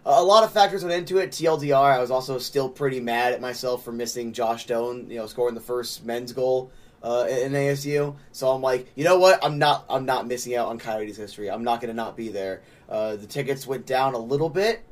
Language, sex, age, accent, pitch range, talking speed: English, male, 20-39, American, 120-145 Hz, 240 wpm